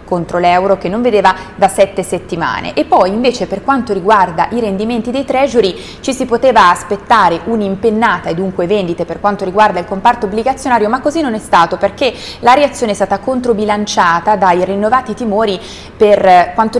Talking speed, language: 170 wpm, Italian